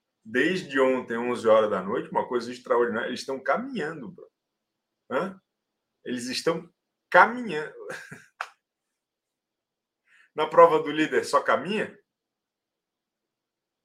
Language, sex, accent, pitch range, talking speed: Portuguese, male, Brazilian, 125-185 Hz, 100 wpm